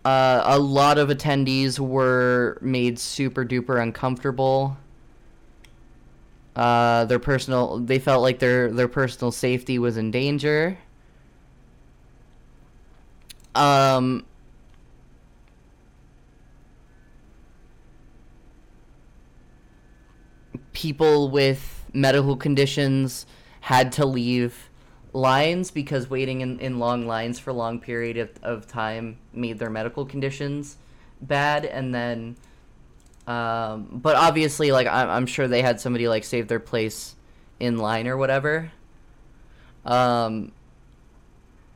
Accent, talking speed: American, 100 wpm